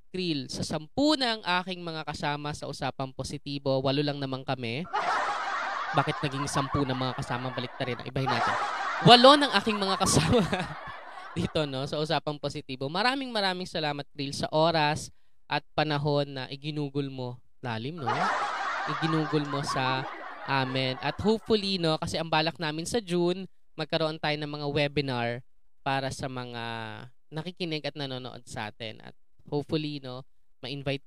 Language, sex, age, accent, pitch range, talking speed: English, female, 20-39, Filipino, 130-170 Hz, 150 wpm